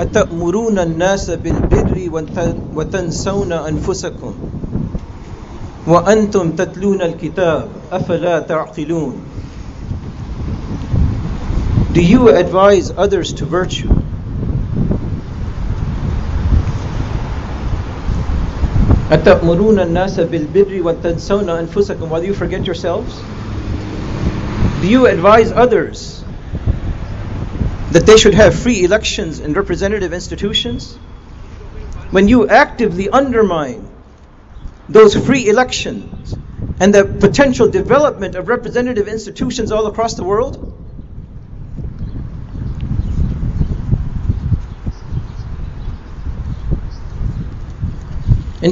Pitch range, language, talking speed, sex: 145-210 Hz, English, 85 wpm, male